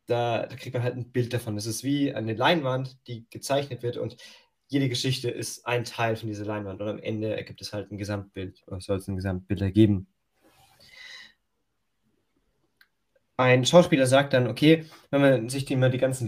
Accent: German